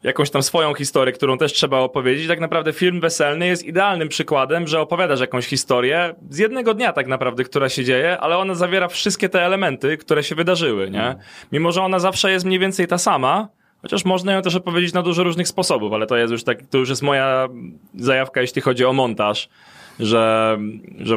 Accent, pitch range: native, 120-165 Hz